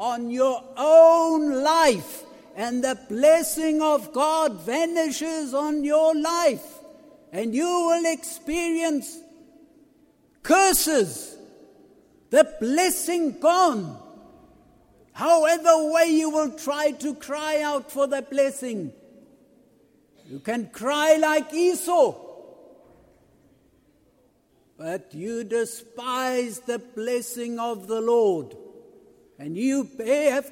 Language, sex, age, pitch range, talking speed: English, male, 60-79, 260-320 Hz, 95 wpm